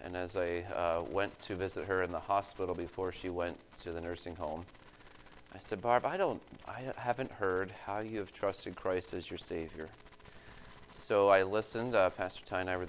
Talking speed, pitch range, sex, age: 195 wpm, 85-105 Hz, male, 30-49